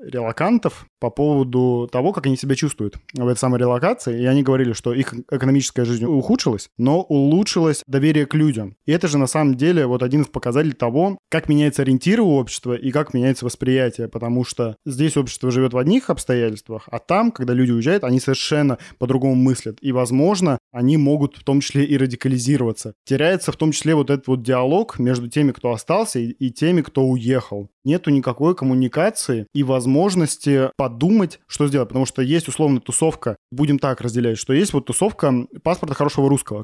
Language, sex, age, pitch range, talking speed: Russian, male, 20-39, 125-150 Hz, 180 wpm